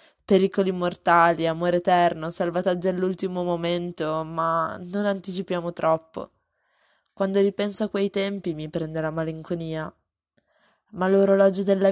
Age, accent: 20-39, native